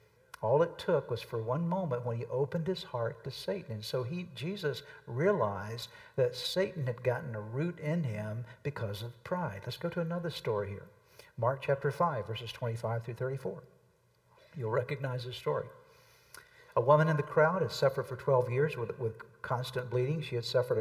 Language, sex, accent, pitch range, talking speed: English, male, American, 110-150 Hz, 180 wpm